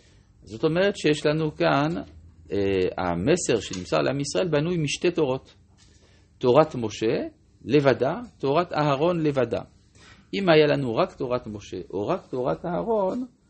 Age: 50-69